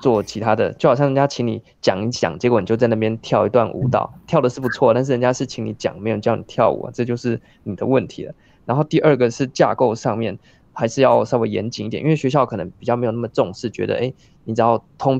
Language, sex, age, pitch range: Chinese, male, 20-39, 110-130 Hz